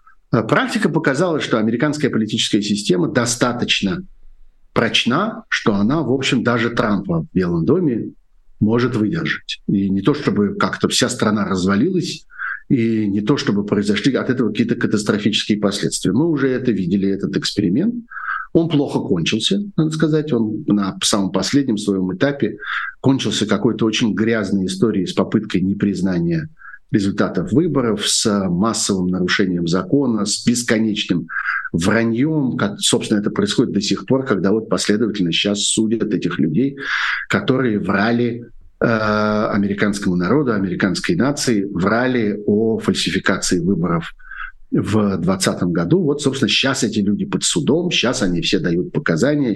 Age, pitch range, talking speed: 50-69, 100-130 Hz, 130 wpm